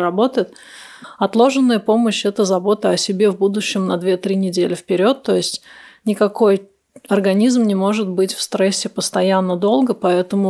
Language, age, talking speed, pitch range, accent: Russian, 30-49, 145 wpm, 185-215 Hz, native